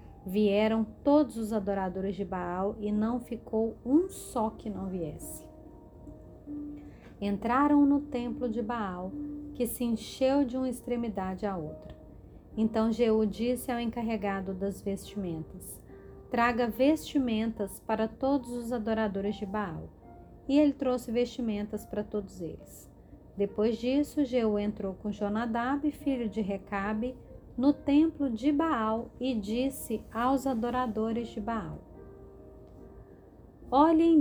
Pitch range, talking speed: 205-255 Hz, 120 wpm